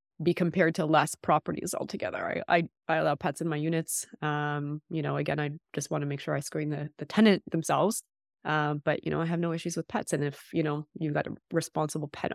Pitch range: 150-175 Hz